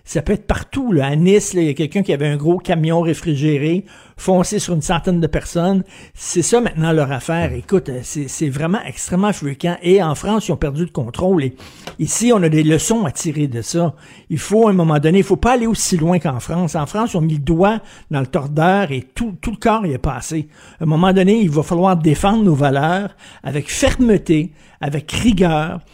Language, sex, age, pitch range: French, male, 60-79, 150-190 Hz